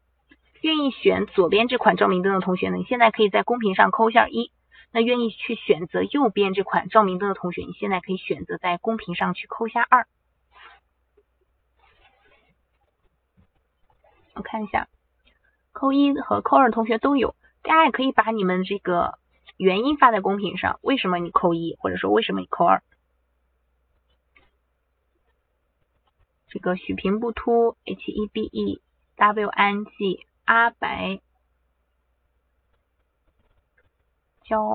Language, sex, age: Chinese, female, 20-39